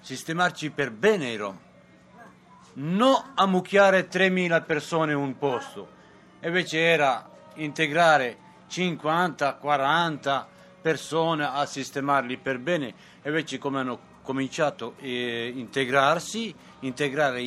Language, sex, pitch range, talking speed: Italian, male, 140-180 Hz, 100 wpm